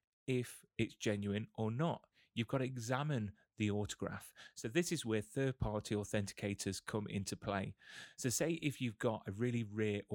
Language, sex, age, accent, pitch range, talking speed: English, male, 30-49, British, 105-120 Hz, 165 wpm